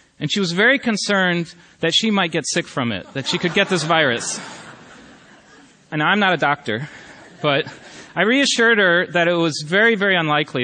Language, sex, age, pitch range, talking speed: English, male, 30-49, 150-195 Hz, 185 wpm